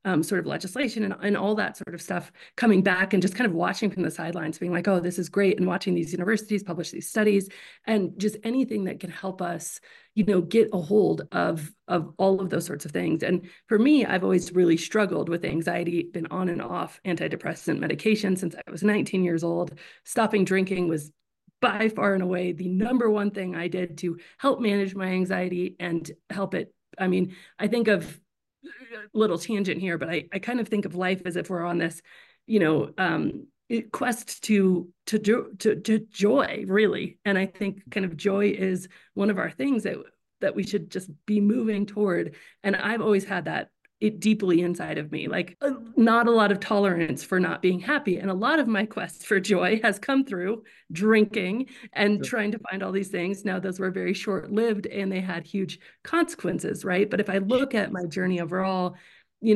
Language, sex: English, female